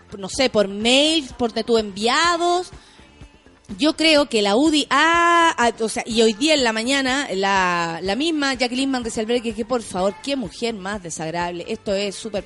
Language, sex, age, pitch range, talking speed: Spanish, female, 30-49, 215-310 Hz, 185 wpm